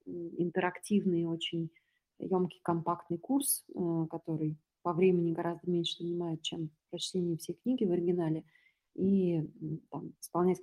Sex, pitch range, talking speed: female, 165-185 Hz, 105 wpm